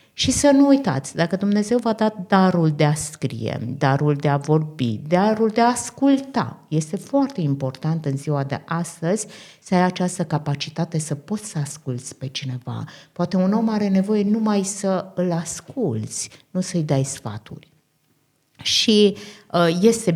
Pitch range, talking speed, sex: 145-205 Hz, 155 wpm, female